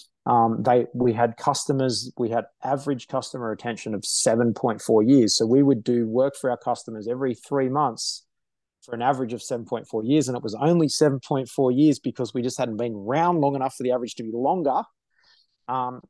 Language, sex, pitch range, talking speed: English, male, 120-140 Hz, 190 wpm